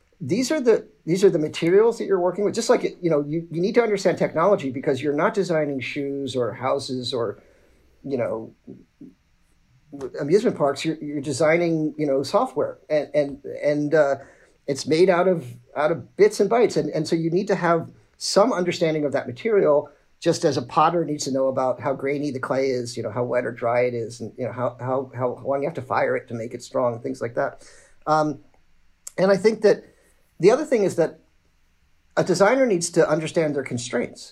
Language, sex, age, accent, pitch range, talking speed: English, male, 50-69, American, 130-170 Hz, 210 wpm